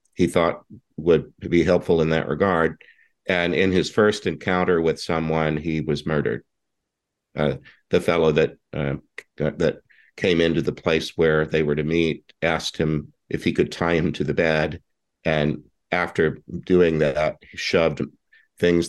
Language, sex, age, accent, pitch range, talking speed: English, male, 50-69, American, 75-85 Hz, 160 wpm